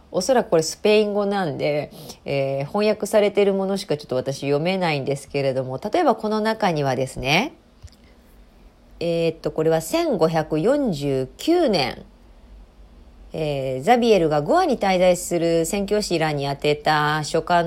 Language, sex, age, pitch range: Japanese, female, 40-59, 150-215 Hz